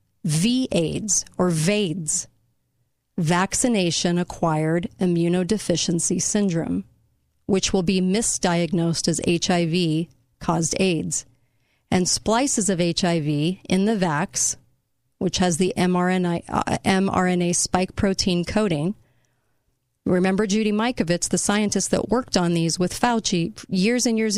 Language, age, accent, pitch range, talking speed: English, 40-59, American, 165-195 Hz, 110 wpm